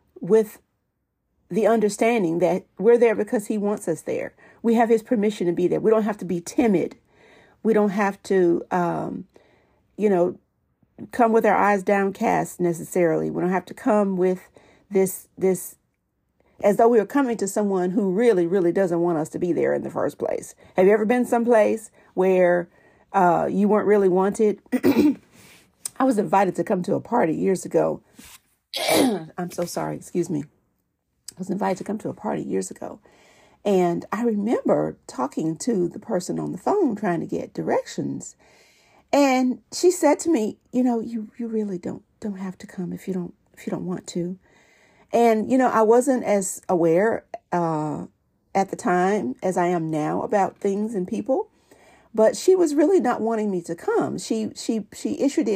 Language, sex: English, female